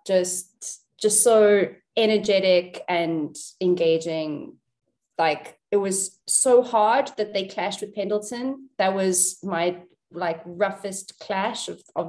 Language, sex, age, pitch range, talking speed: English, female, 20-39, 205-320 Hz, 120 wpm